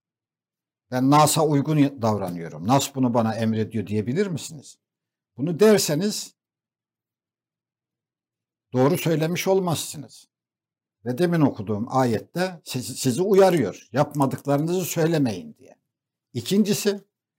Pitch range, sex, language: 125-175 Hz, male, Turkish